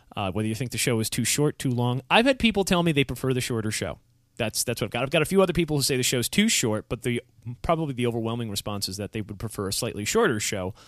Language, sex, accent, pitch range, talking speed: English, male, American, 110-150 Hz, 300 wpm